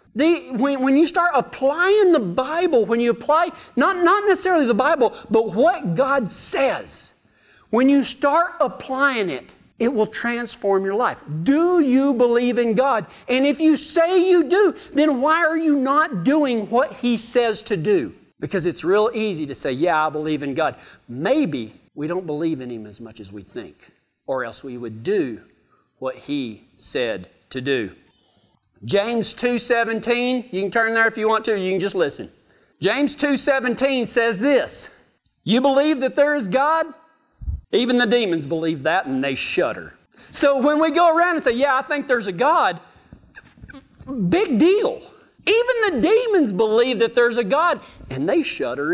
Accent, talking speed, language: American, 175 wpm, English